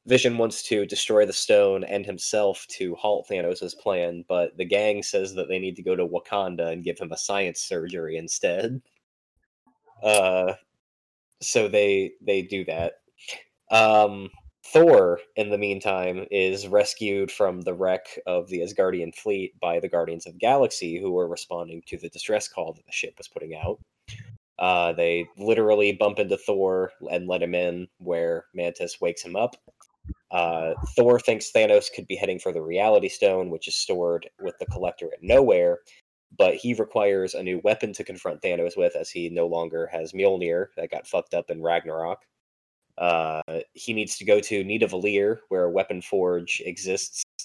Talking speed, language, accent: 175 wpm, English, American